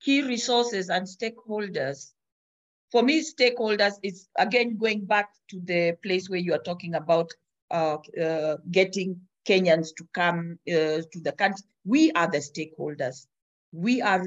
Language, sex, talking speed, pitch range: English, female, 145 wpm, 165-205 Hz